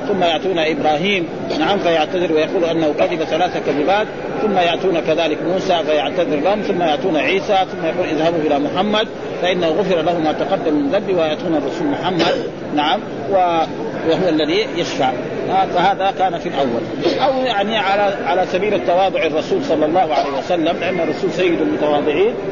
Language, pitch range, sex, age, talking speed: Arabic, 165-205 Hz, male, 50-69, 150 wpm